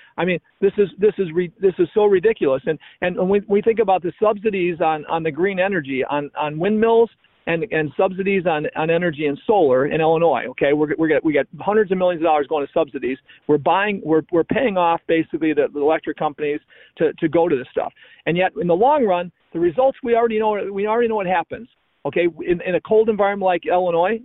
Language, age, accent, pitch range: English, 40-59, American, 155-205 Hz